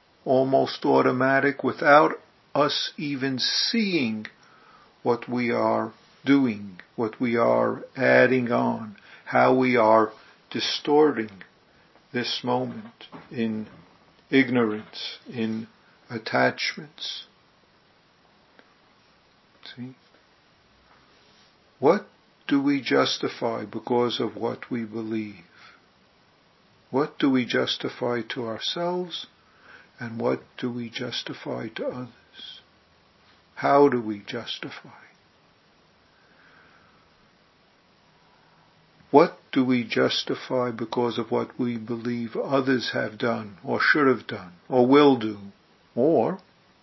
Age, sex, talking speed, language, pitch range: 50-69, male, 90 wpm, English, 110-135 Hz